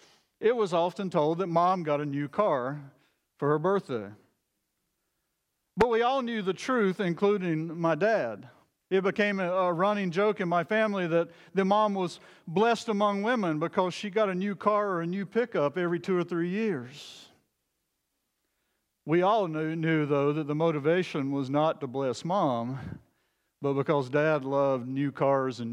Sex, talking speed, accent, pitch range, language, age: male, 165 wpm, American, 150-195 Hz, English, 50-69